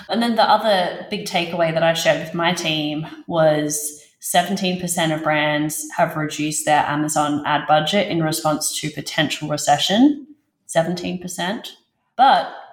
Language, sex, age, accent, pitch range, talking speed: English, female, 30-49, Australian, 150-185 Hz, 135 wpm